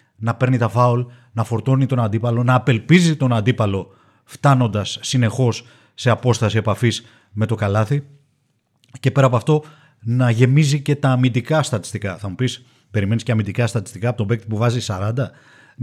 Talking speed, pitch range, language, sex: 165 wpm, 115-145 Hz, Greek, male